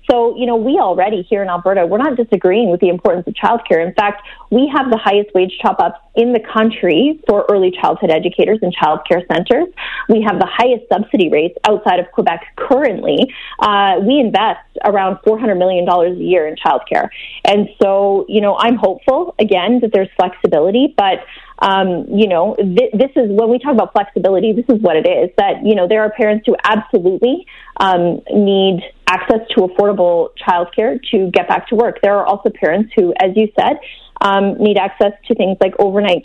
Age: 30-49